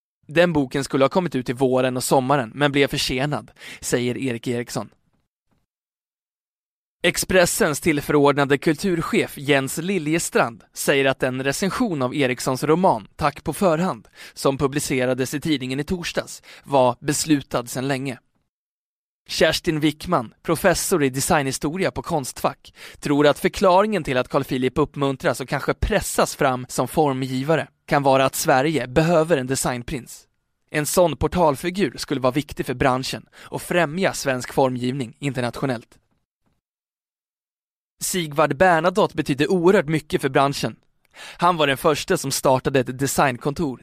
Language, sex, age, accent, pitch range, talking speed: Swedish, male, 20-39, native, 130-160 Hz, 135 wpm